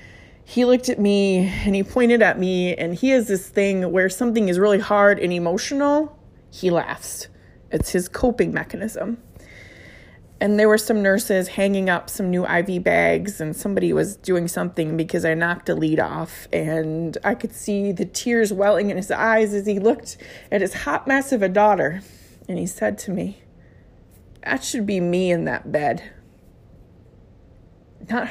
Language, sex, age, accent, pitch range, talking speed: English, female, 30-49, American, 170-215 Hz, 175 wpm